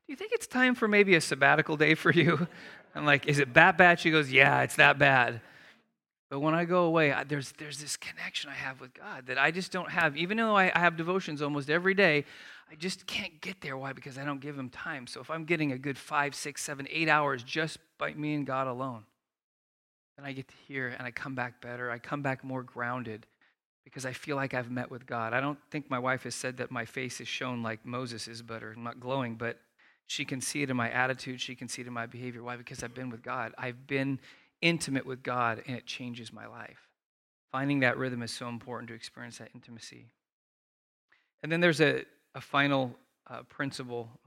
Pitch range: 120-150 Hz